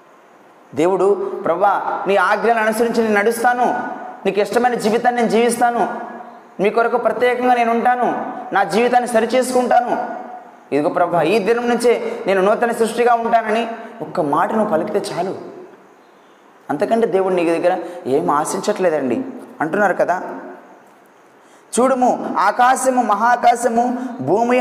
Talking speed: 110 wpm